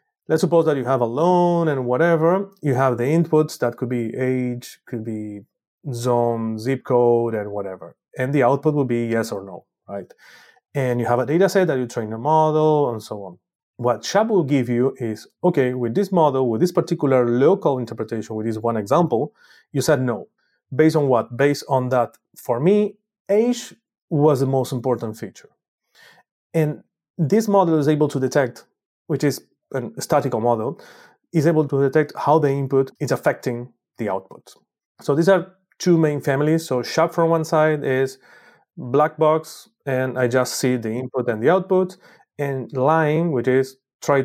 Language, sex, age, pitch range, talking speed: English, male, 30-49, 120-155 Hz, 185 wpm